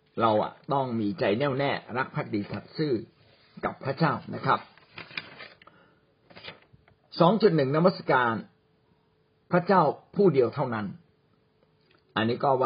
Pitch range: 130-175 Hz